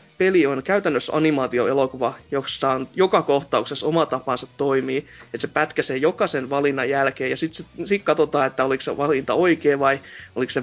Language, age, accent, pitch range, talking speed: Finnish, 30-49, native, 145-200 Hz, 165 wpm